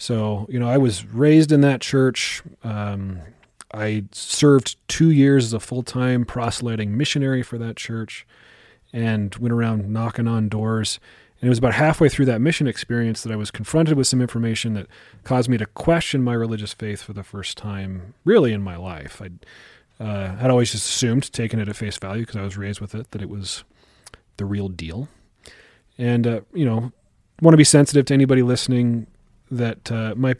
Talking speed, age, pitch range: 190 wpm, 30-49, 105-125 Hz